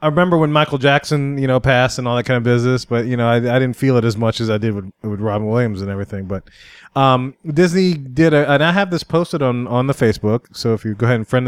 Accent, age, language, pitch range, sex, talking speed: American, 30-49, English, 115-145 Hz, male, 280 wpm